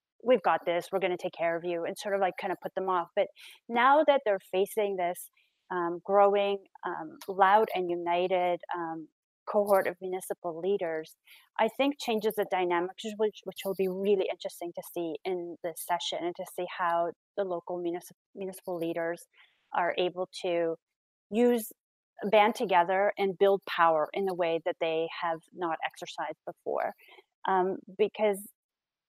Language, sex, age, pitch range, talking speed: English, female, 30-49, 175-200 Hz, 165 wpm